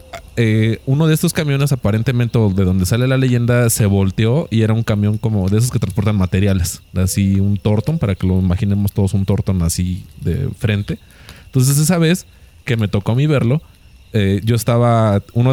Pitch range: 95-125 Hz